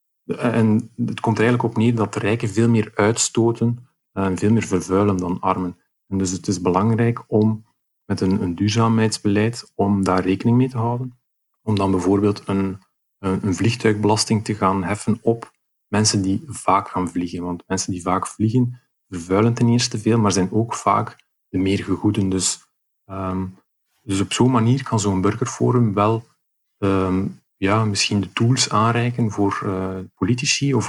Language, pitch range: Dutch, 95-115 Hz